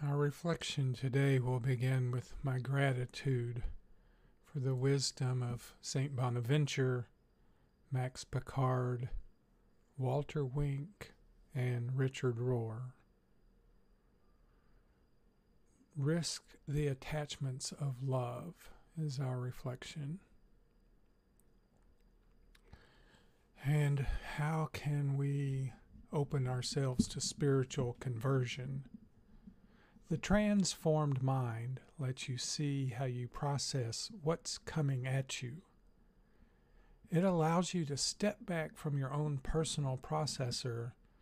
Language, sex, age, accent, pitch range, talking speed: English, male, 50-69, American, 125-155 Hz, 90 wpm